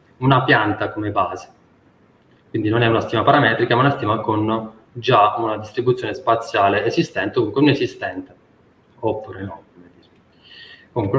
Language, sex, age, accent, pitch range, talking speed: Italian, male, 20-39, native, 105-135 Hz, 140 wpm